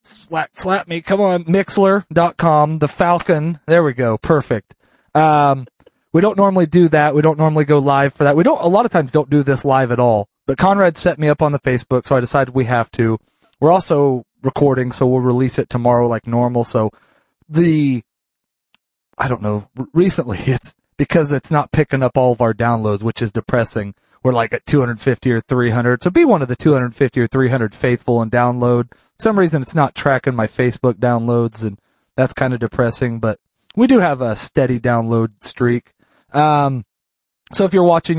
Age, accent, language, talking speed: 30-49, American, English, 205 wpm